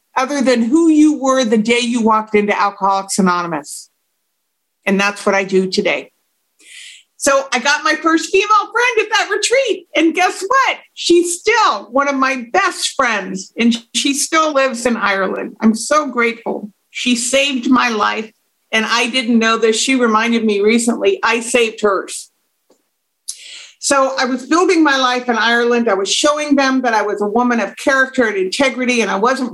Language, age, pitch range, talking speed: English, 50-69, 220-300 Hz, 175 wpm